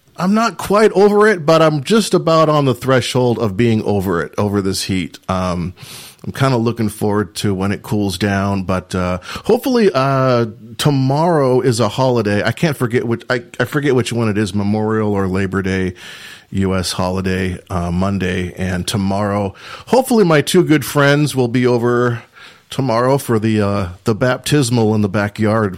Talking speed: 175 wpm